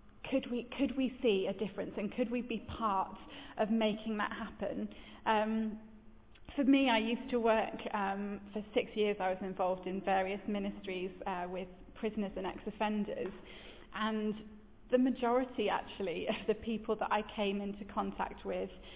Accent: British